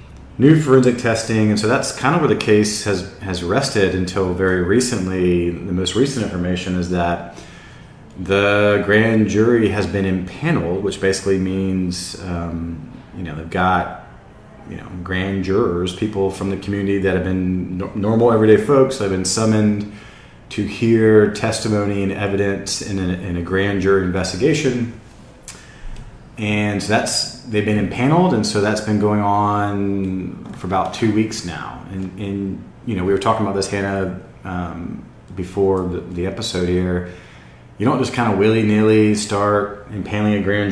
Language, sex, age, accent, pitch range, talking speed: English, male, 30-49, American, 90-105 Hz, 160 wpm